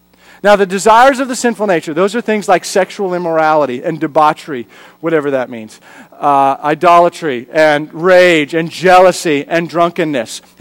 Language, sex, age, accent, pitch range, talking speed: English, male, 40-59, American, 170-235 Hz, 145 wpm